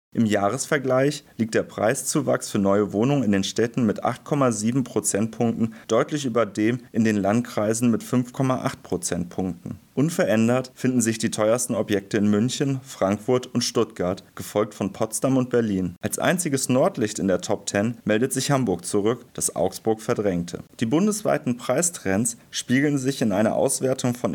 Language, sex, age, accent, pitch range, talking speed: German, male, 30-49, German, 105-125 Hz, 155 wpm